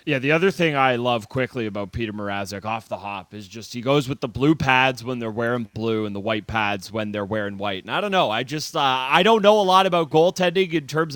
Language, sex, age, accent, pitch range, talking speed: English, male, 30-49, American, 115-145 Hz, 265 wpm